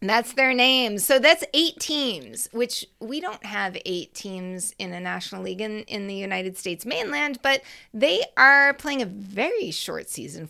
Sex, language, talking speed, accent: female, English, 185 wpm, American